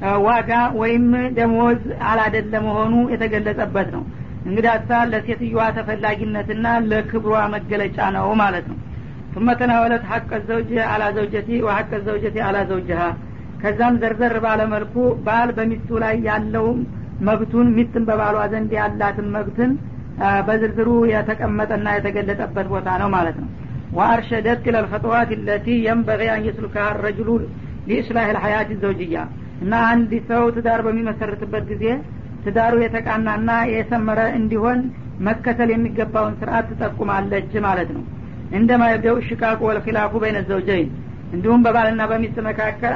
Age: 50-69